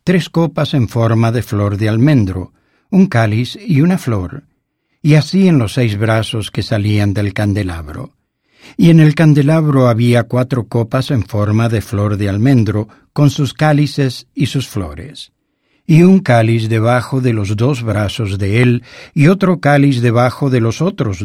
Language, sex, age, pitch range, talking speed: English, male, 60-79, 110-145 Hz, 165 wpm